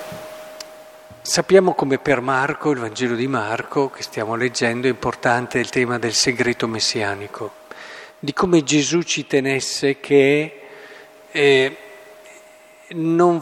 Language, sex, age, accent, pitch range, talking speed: Italian, male, 50-69, native, 145-195 Hz, 115 wpm